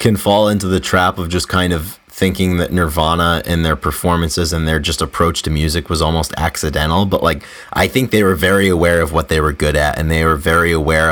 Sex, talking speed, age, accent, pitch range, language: male, 230 wpm, 30-49, American, 85-100 Hz, English